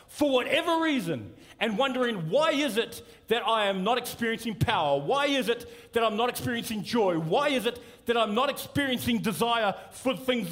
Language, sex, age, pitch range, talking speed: English, male, 40-59, 160-255 Hz, 185 wpm